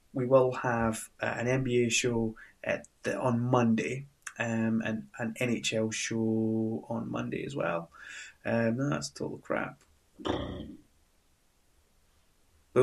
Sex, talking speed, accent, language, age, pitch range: male, 110 wpm, British, English, 20-39, 110-125 Hz